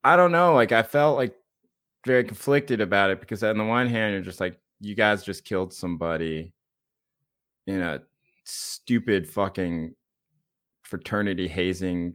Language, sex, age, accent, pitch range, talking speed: English, male, 30-49, American, 85-115 Hz, 150 wpm